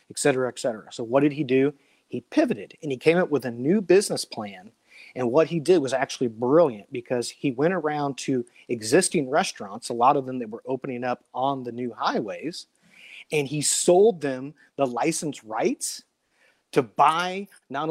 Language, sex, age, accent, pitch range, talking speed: English, male, 30-49, American, 130-155 Hz, 190 wpm